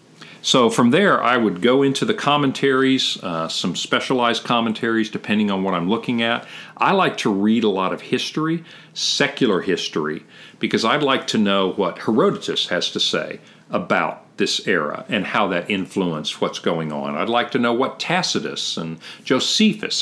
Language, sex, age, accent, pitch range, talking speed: English, male, 50-69, American, 105-160 Hz, 170 wpm